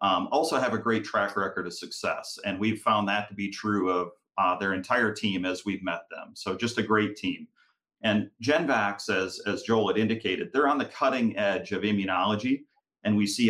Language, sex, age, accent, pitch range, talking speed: English, male, 40-59, American, 95-115 Hz, 210 wpm